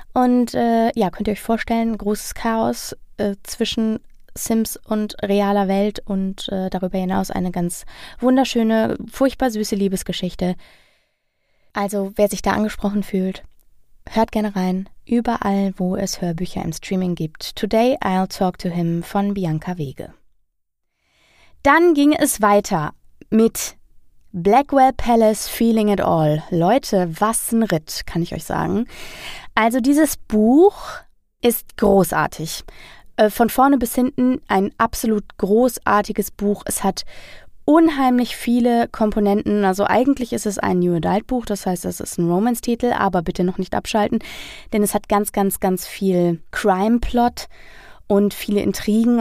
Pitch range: 185-230 Hz